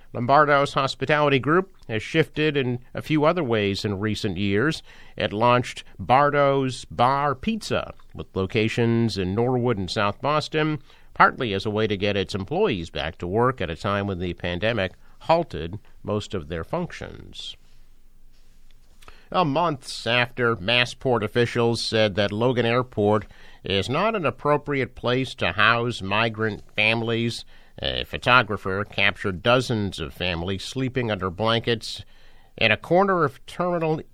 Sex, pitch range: male, 95-120 Hz